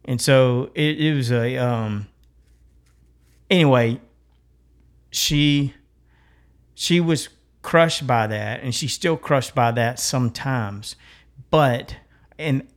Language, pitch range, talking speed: English, 105-135 Hz, 110 wpm